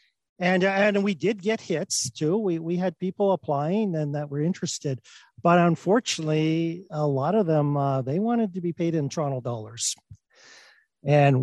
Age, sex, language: 50-69, male, English